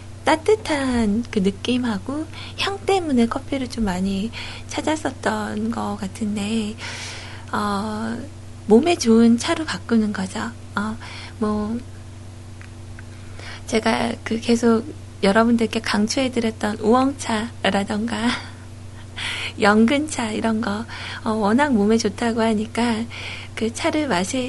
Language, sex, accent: Korean, female, native